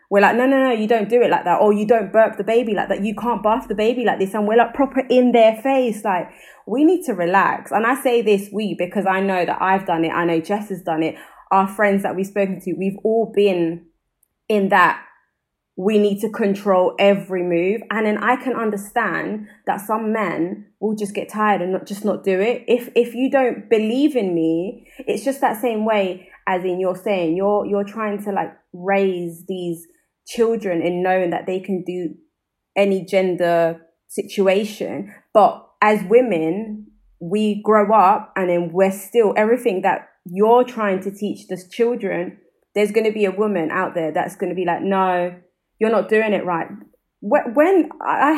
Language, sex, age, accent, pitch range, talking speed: English, female, 20-39, British, 185-230 Hz, 200 wpm